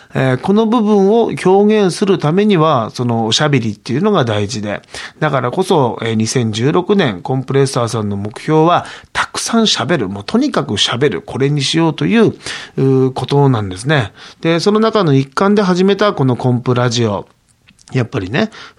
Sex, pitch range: male, 120-180 Hz